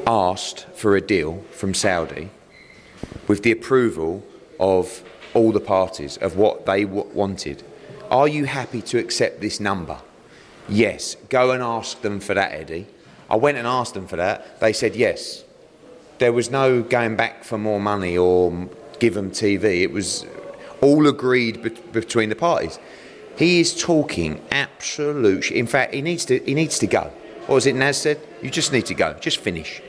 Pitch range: 105-135 Hz